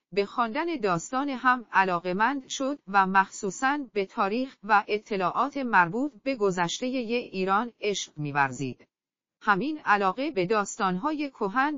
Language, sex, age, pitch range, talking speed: Persian, female, 40-59, 190-265 Hz, 120 wpm